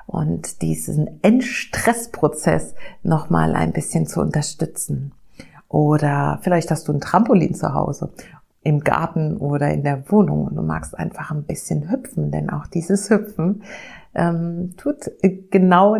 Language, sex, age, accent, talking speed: German, female, 50-69, German, 140 wpm